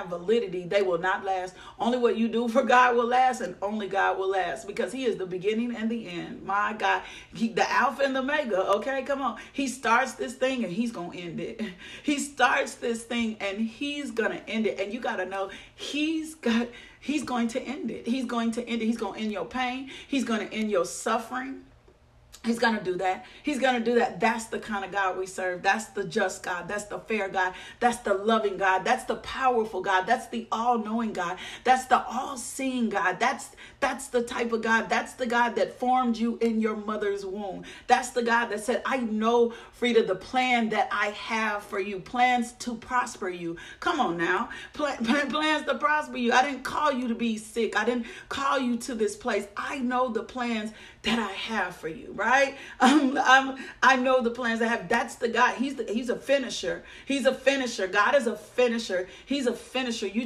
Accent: American